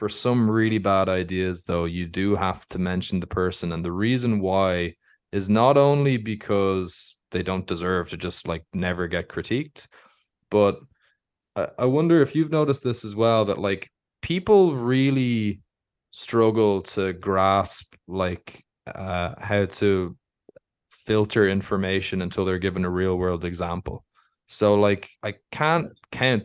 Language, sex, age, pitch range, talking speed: English, male, 20-39, 95-120 Hz, 145 wpm